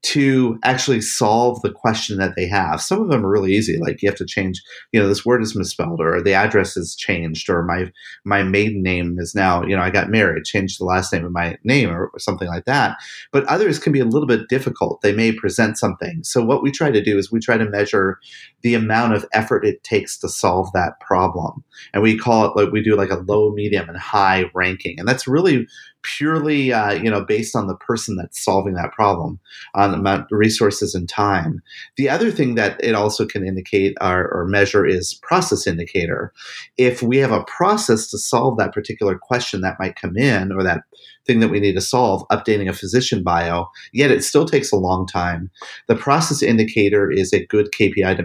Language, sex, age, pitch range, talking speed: English, male, 30-49, 95-120 Hz, 220 wpm